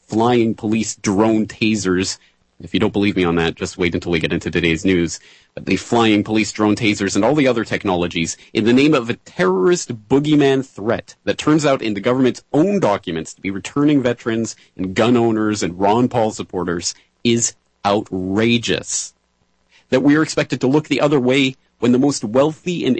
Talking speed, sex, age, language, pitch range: 190 wpm, male, 40-59, English, 95-130 Hz